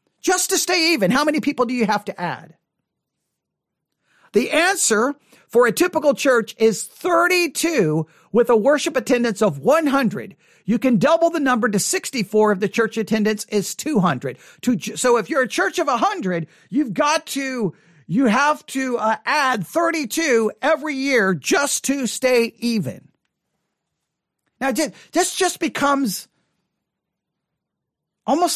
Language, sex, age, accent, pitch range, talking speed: English, male, 50-69, American, 220-300 Hz, 135 wpm